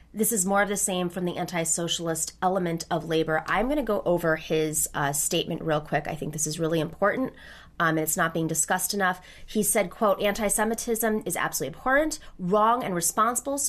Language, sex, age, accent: English, female, 30-49, American